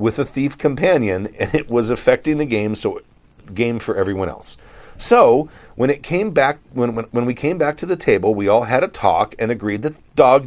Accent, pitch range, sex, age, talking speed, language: American, 115-145 Hz, male, 50-69, 225 wpm, English